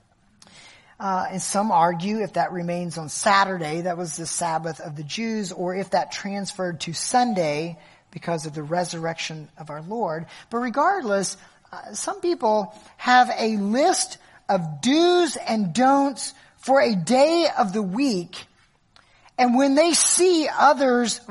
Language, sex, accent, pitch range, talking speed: English, male, American, 170-250 Hz, 145 wpm